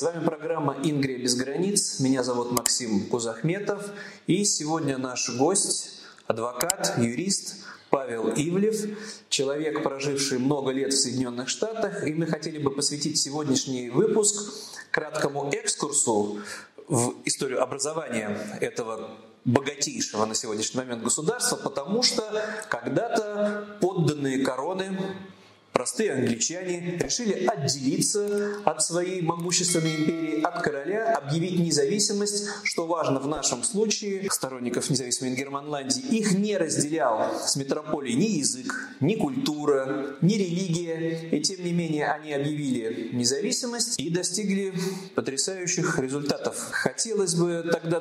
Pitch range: 135-195 Hz